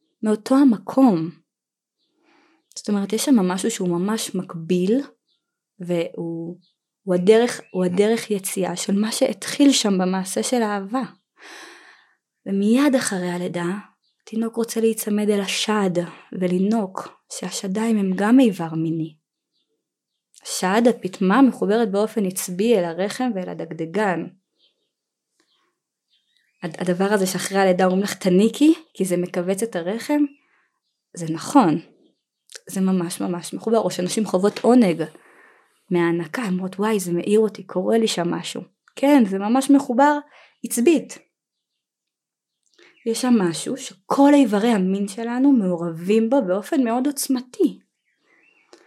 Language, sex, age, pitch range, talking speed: Hebrew, female, 20-39, 185-245 Hz, 115 wpm